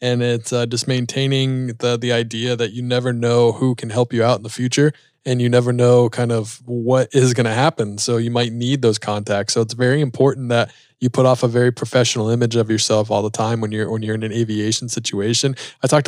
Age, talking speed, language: 20-39, 240 wpm, English